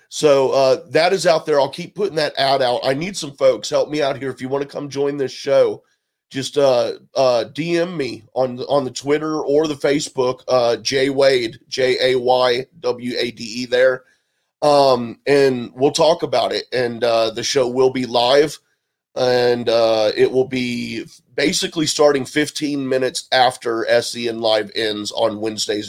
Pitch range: 125-155 Hz